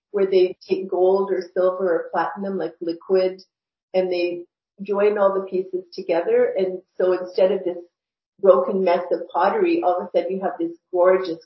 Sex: female